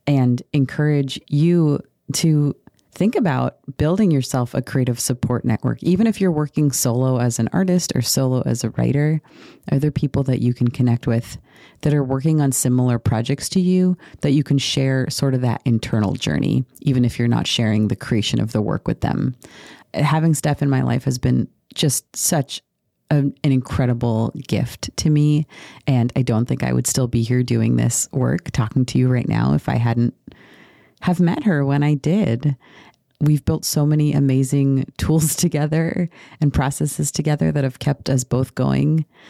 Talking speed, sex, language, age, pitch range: 180 wpm, female, English, 30-49, 120-150 Hz